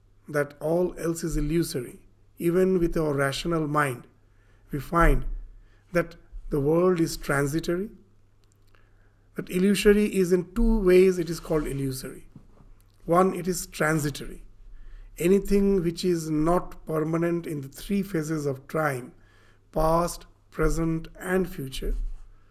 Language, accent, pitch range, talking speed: English, Indian, 110-175 Hz, 125 wpm